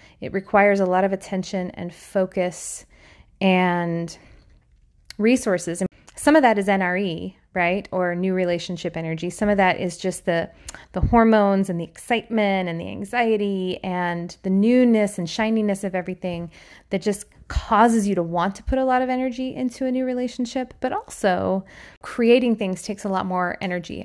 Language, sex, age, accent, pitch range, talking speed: English, female, 20-39, American, 180-210 Hz, 165 wpm